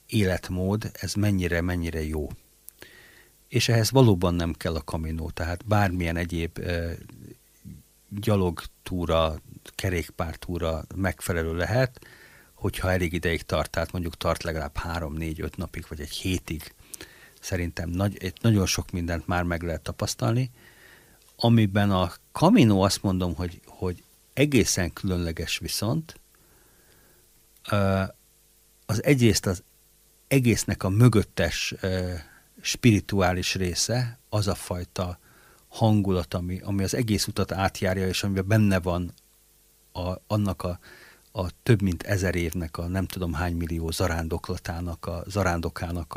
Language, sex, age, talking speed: Hungarian, male, 60-79, 120 wpm